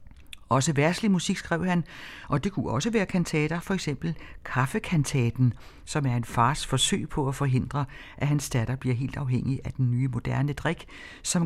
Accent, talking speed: native, 180 wpm